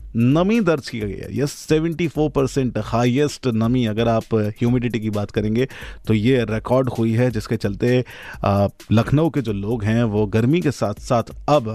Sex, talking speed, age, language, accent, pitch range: male, 175 wpm, 30-49, Hindi, native, 115-145 Hz